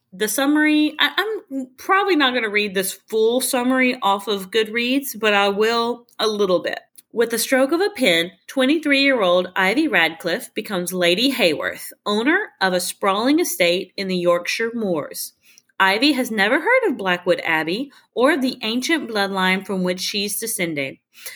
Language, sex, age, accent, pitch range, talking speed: English, female, 30-49, American, 185-260 Hz, 155 wpm